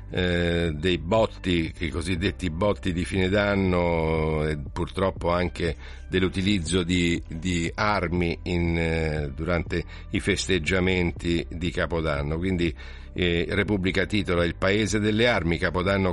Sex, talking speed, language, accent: male, 115 wpm, Italian, native